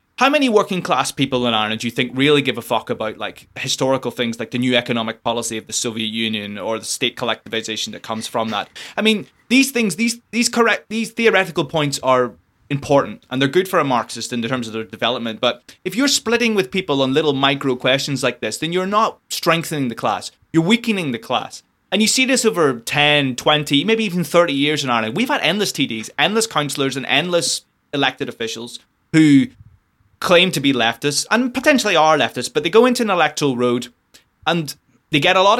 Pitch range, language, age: 120-190 Hz, English, 20-39